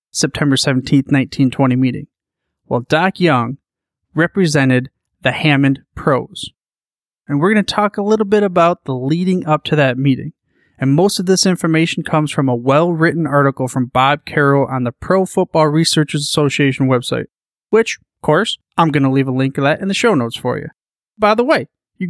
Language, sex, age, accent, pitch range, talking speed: English, male, 30-49, American, 135-190 Hz, 185 wpm